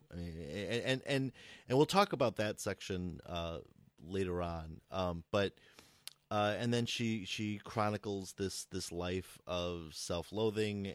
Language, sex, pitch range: English, male, 90-110 Hz